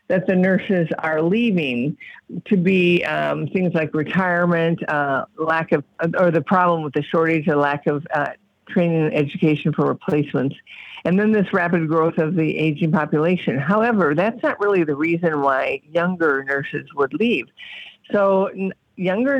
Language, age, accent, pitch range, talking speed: English, 50-69, American, 155-195 Hz, 160 wpm